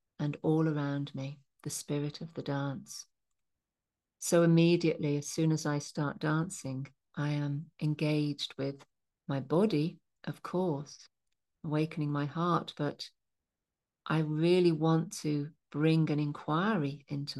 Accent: British